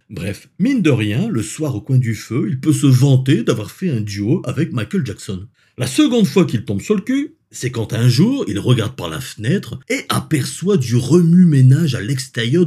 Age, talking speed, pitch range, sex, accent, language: 50-69, 210 wpm, 115-155 Hz, male, French, French